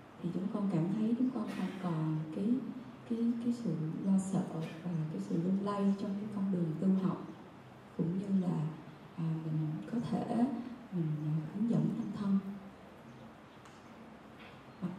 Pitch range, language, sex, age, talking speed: 170-220 Hz, Vietnamese, female, 20-39, 155 wpm